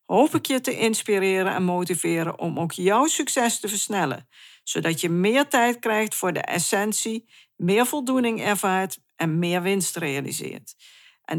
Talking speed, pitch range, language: 155 wpm, 180-230 Hz, Dutch